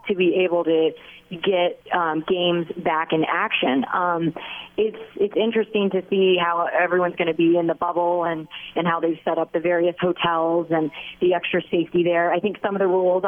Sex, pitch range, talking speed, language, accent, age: female, 165-185 Hz, 200 wpm, English, American, 30-49